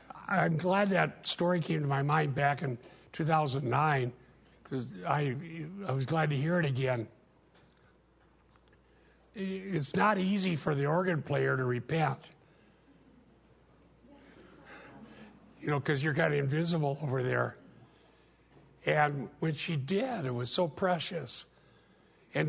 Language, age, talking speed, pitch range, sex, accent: English, 60-79, 125 wpm, 130-165 Hz, male, American